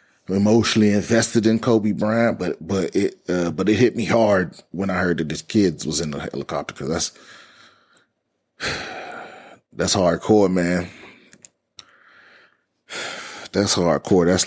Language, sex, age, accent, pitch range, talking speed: English, male, 30-49, American, 90-115 Hz, 135 wpm